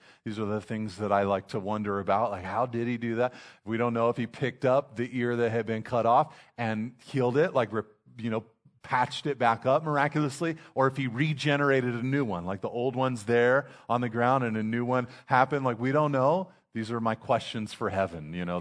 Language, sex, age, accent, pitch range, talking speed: English, male, 40-59, American, 105-150 Hz, 235 wpm